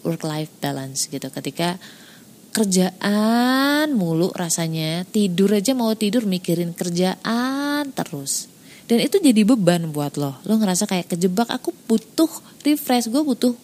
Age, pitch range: 20-39, 185-255 Hz